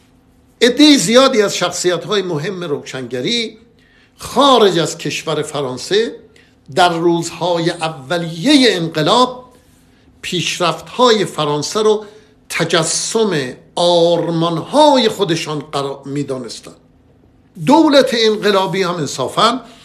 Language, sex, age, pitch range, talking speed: Persian, male, 60-79, 155-220 Hz, 80 wpm